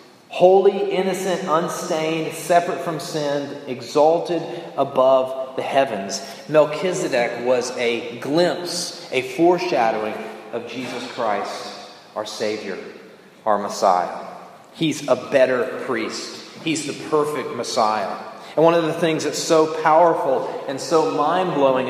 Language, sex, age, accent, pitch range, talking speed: English, male, 30-49, American, 140-175 Hz, 115 wpm